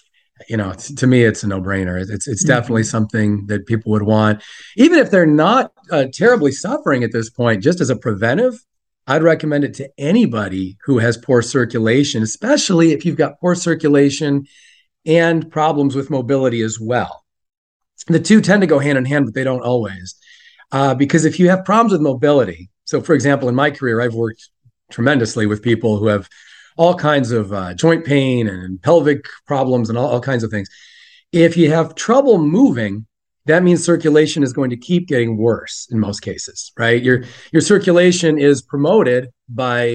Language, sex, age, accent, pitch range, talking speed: English, male, 40-59, American, 115-155 Hz, 185 wpm